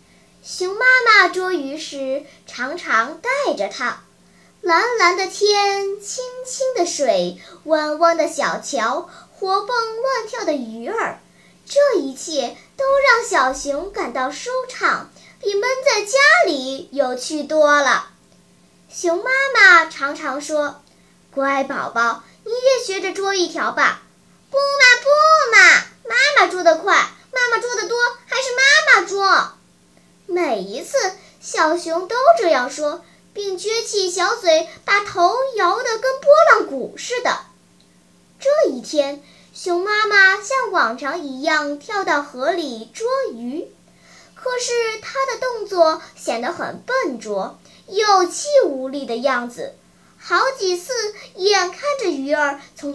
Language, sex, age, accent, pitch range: Chinese, male, 10-29, native, 290-450 Hz